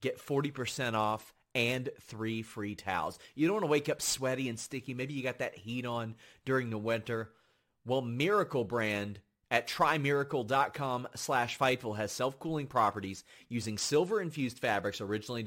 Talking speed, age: 150 wpm, 30-49